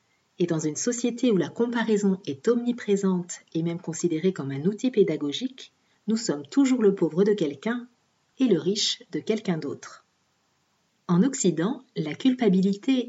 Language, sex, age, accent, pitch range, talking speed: French, female, 40-59, French, 180-250 Hz, 150 wpm